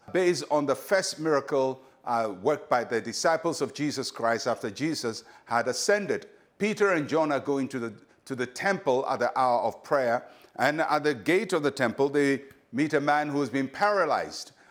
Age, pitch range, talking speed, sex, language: 50-69, 135-185 Hz, 190 wpm, male, English